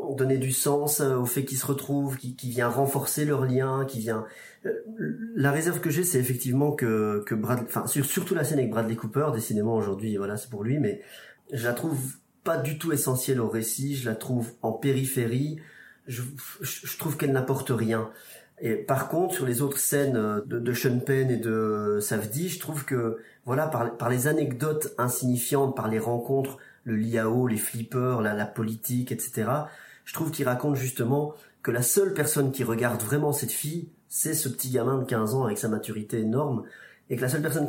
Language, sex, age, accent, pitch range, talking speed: French, male, 30-49, French, 115-140 Hz, 195 wpm